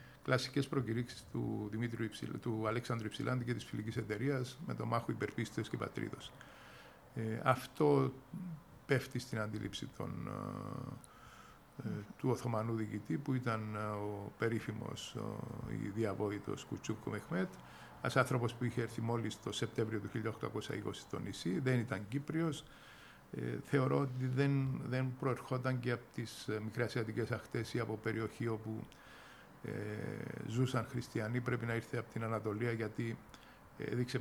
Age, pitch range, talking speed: 50-69, 110-130 Hz, 130 wpm